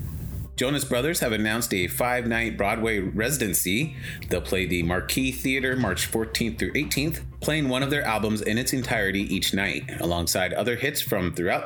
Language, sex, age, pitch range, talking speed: English, male, 30-49, 100-130 Hz, 165 wpm